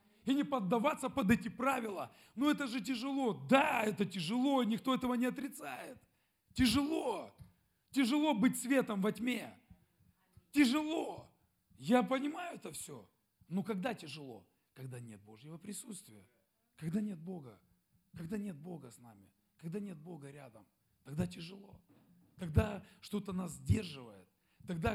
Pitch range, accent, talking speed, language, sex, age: 135-215 Hz, native, 130 wpm, Russian, male, 40-59